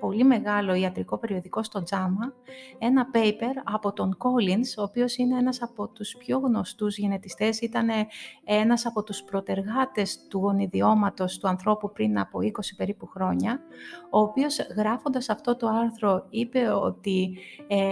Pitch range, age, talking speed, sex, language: 200-250 Hz, 30-49, 145 wpm, female, Greek